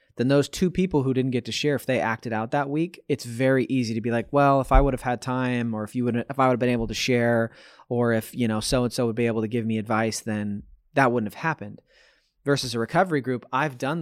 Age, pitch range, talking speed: 20-39, 110-135 Hz, 280 wpm